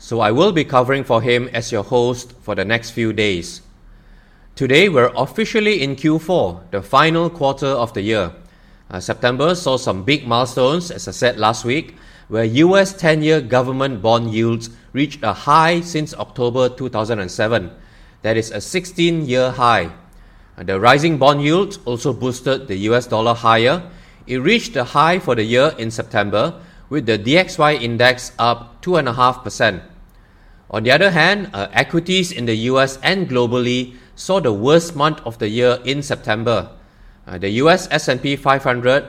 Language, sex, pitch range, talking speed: English, male, 110-150 Hz, 165 wpm